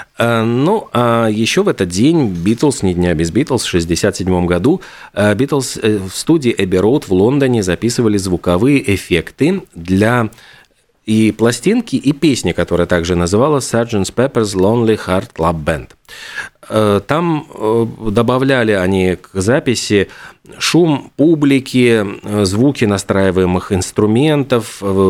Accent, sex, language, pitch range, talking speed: native, male, Russian, 95-125 Hz, 110 wpm